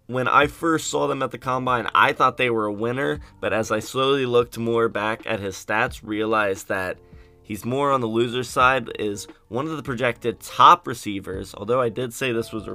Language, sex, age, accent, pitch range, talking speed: English, male, 20-39, American, 105-125 Hz, 215 wpm